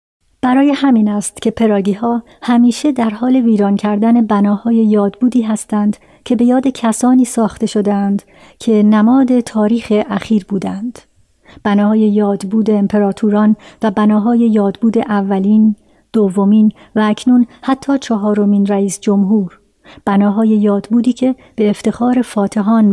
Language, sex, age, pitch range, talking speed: Persian, male, 50-69, 205-235 Hz, 115 wpm